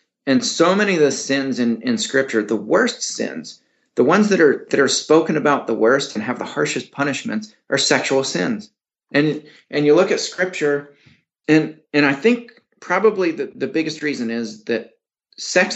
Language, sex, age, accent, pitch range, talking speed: English, male, 30-49, American, 130-175 Hz, 185 wpm